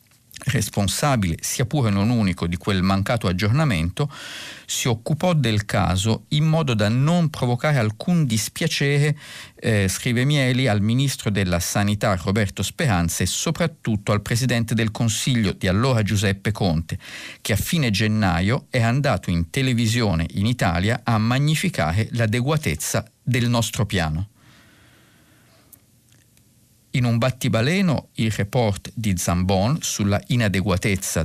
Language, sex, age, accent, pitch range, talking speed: Italian, male, 50-69, native, 100-130 Hz, 125 wpm